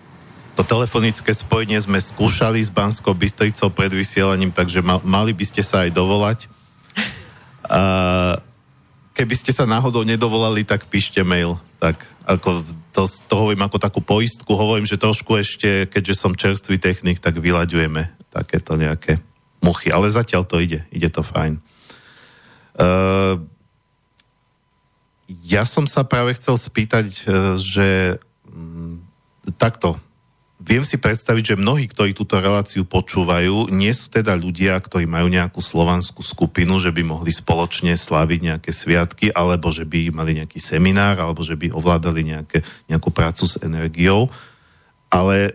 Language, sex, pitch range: Slovak, male, 85-105 Hz